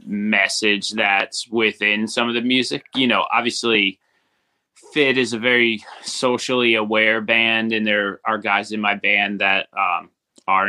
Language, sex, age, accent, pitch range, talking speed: English, male, 20-39, American, 100-115 Hz, 150 wpm